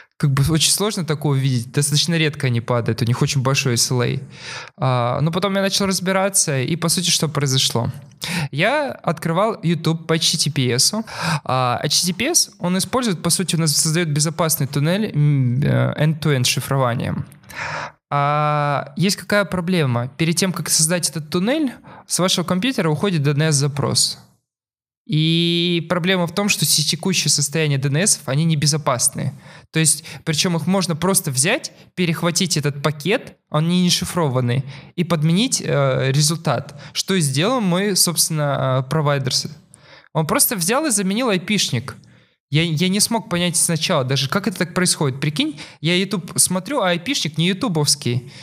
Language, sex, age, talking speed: Russian, male, 20-39, 140 wpm